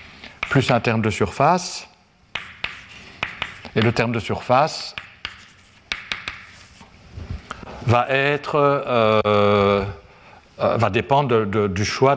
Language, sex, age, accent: French, male, 60-79, French